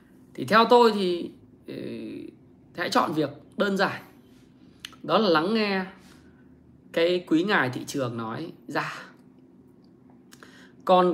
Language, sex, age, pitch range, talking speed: Vietnamese, male, 20-39, 135-205 Hz, 120 wpm